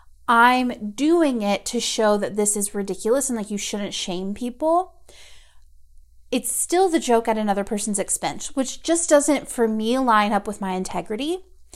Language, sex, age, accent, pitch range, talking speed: English, female, 30-49, American, 195-250 Hz, 170 wpm